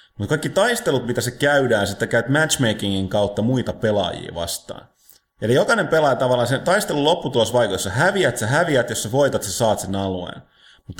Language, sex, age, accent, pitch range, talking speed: Finnish, male, 30-49, native, 100-130 Hz, 175 wpm